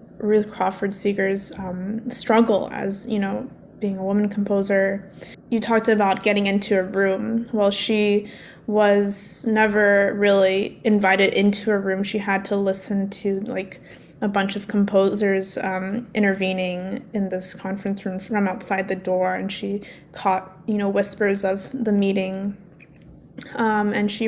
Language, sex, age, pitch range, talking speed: English, female, 20-39, 195-215 Hz, 150 wpm